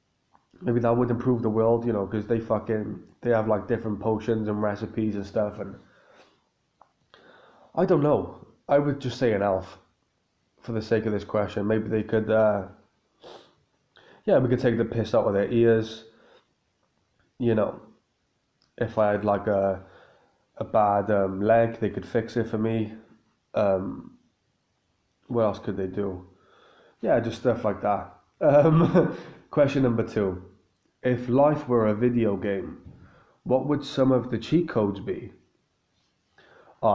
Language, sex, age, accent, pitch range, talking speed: English, male, 20-39, British, 105-120 Hz, 160 wpm